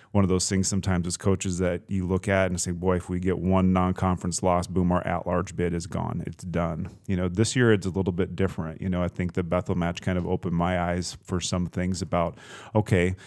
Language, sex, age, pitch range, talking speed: English, male, 30-49, 90-100 Hz, 245 wpm